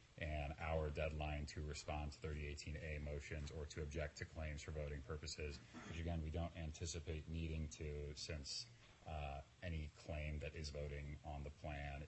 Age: 30-49